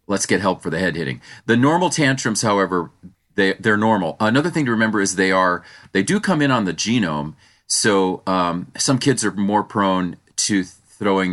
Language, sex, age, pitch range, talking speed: English, male, 40-59, 90-115 Hz, 195 wpm